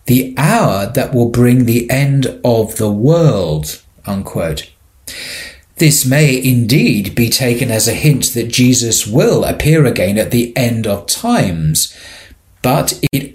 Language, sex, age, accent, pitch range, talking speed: English, male, 40-59, British, 105-140 Hz, 140 wpm